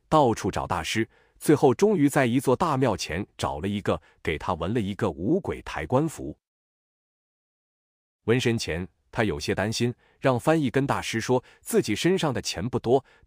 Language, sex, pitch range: Chinese, male, 105-150 Hz